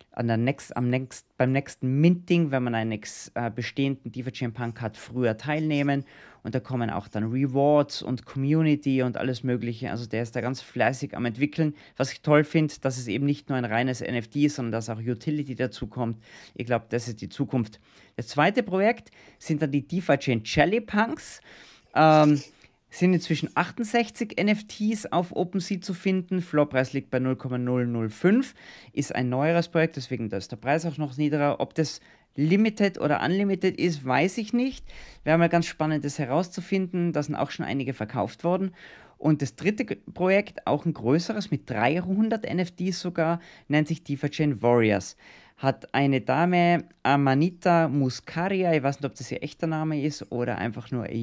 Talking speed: 175 wpm